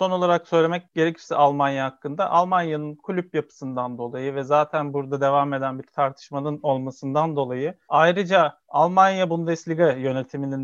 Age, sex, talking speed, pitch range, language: 40-59, male, 130 wpm, 140-180 Hz, Turkish